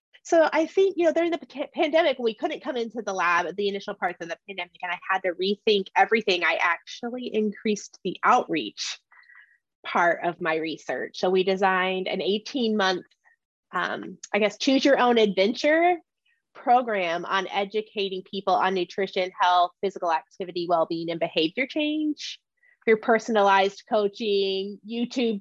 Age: 20-39